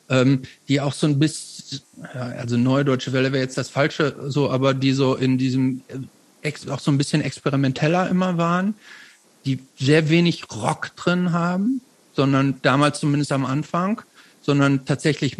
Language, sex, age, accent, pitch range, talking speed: German, male, 50-69, German, 140-170 Hz, 150 wpm